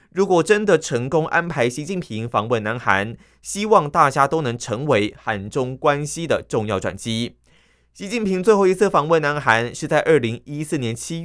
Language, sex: Chinese, male